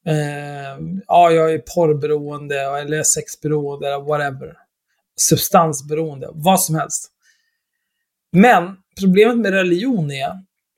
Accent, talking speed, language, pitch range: native, 90 wpm, Swedish, 150-195 Hz